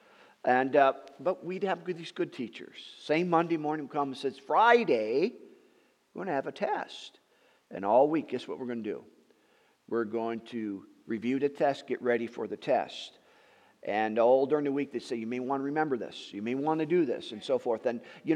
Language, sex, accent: English, male, American